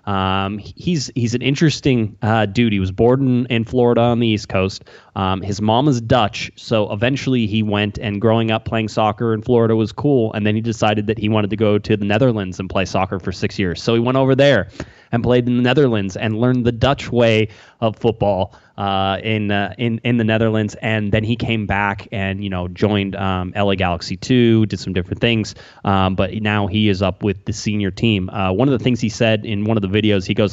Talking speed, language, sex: 230 wpm, English, male